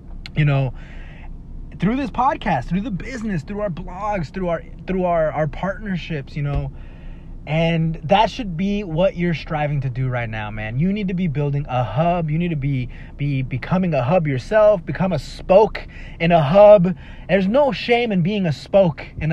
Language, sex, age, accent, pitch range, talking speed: English, male, 20-39, American, 145-195 Hz, 190 wpm